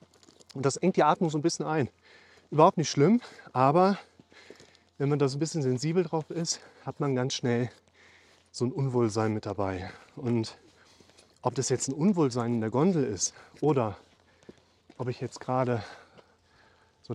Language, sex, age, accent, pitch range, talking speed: German, male, 30-49, German, 115-155 Hz, 165 wpm